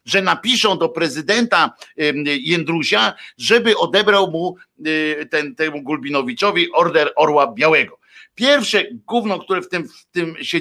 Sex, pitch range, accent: male, 150-210 Hz, native